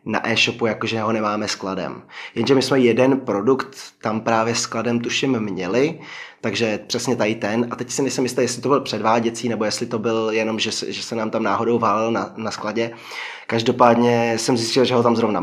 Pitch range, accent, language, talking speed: 110-125 Hz, native, Czech, 195 wpm